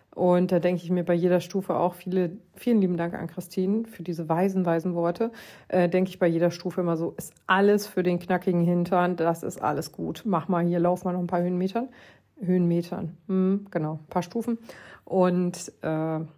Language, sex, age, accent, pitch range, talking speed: German, female, 40-59, German, 175-210 Hz, 195 wpm